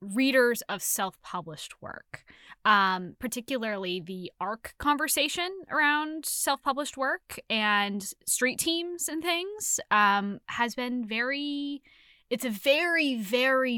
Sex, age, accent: female, 10-29, American